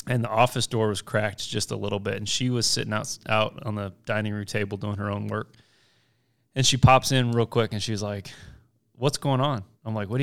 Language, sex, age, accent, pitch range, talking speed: English, male, 20-39, American, 110-140 Hz, 240 wpm